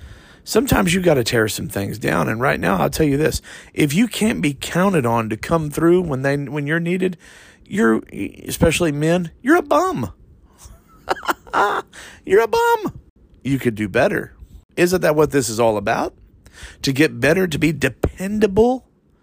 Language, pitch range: English, 110-185 Hz